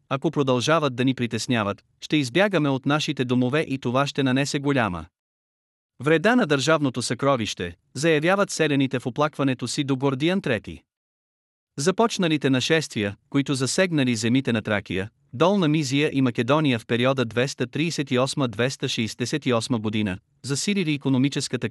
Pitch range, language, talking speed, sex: 120-150 Hz, Bulgarian, 120 wpm, male